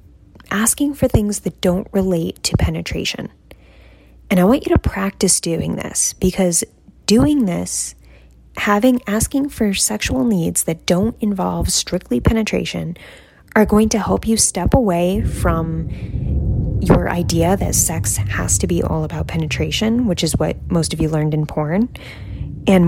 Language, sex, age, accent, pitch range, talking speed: English, female, 10-29, American, 165-210 Hz, 150 wpm